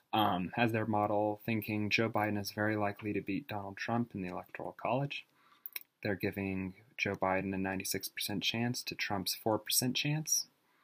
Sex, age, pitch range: male, 30-49, 100-115 Hz